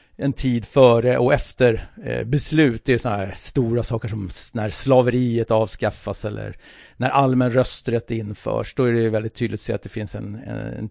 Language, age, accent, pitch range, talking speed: English, 60-79, Swedish, 115-130 Hz, 185 wpm